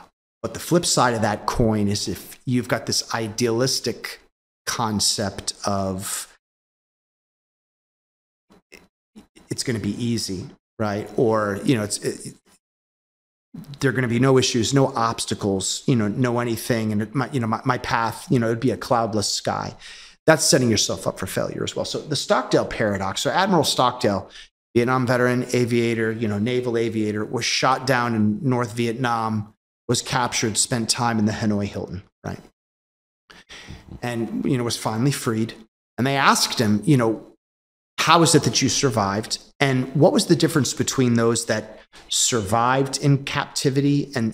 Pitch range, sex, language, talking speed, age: 105-130 Hz, male, English, 165 wpm, 30-49